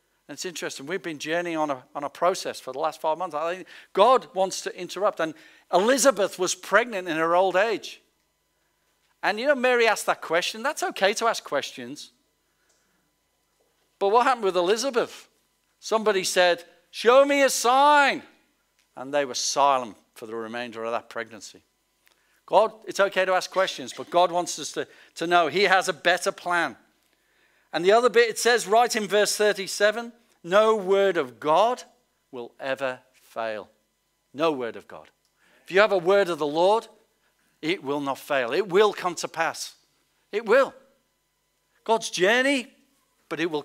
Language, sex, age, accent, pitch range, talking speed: English, male, 50-69, British, 155-230 Hz, 170 wpm